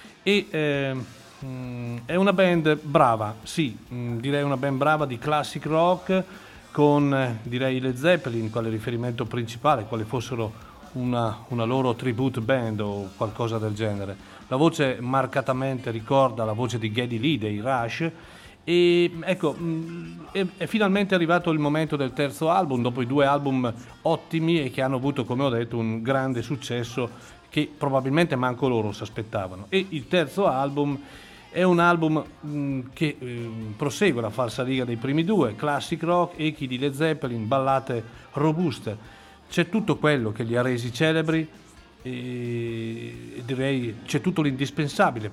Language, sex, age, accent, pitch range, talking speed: Italian, male, 40-59, native, 115-155 Hz, 145 wpm